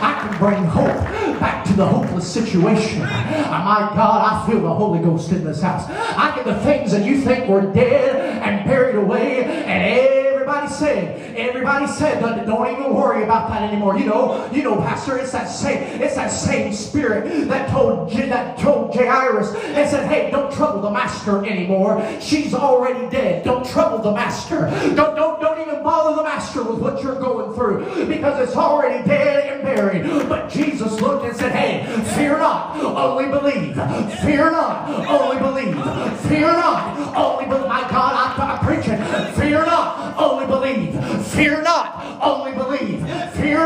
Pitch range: 245-315 Hz